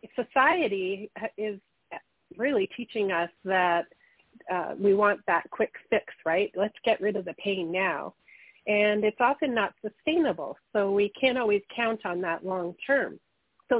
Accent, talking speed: American, 150 wpm